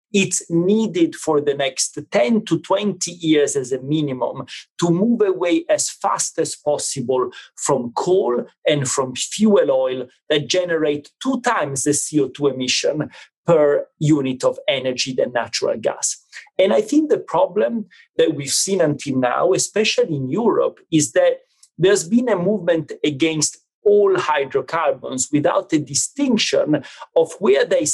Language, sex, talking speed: English, male, 145 wpm